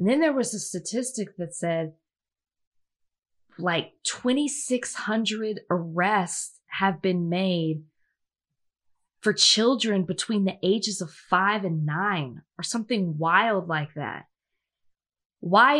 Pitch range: 170-225 Hz